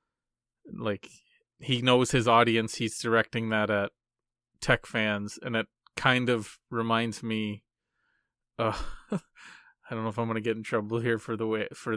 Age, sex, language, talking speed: 30-49, male, English, 160 wpm